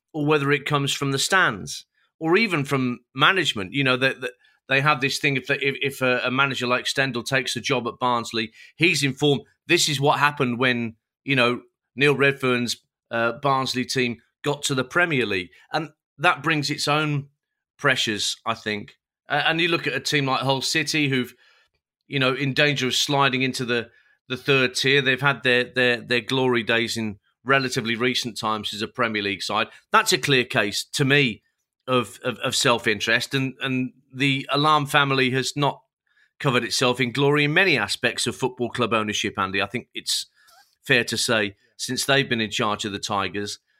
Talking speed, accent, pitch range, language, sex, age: 190 wpm, British, 120-145 Hz, English, male, 40-59